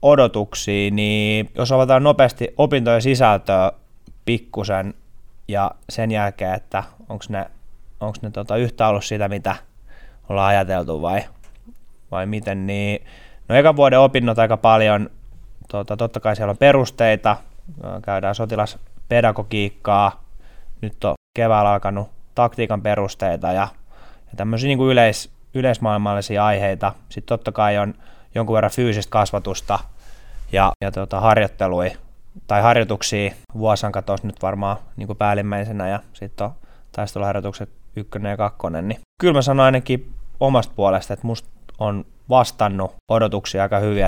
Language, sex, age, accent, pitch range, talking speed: Finnish, male, 20-39, native, 100-115 Hz, 130 wpm